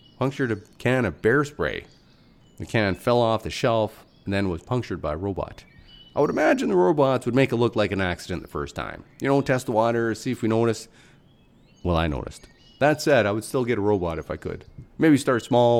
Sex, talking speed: male, 230 wpm